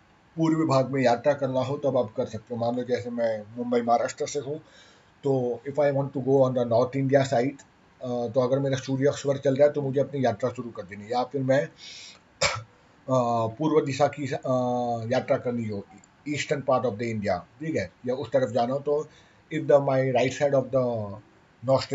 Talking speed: 210 wpm